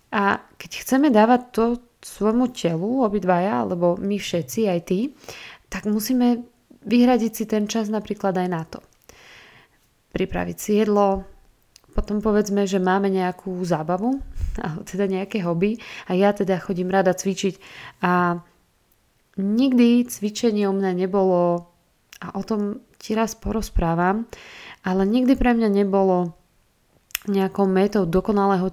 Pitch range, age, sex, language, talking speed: 180-215 Hz, 20-39, female, Slovak, 125 wpm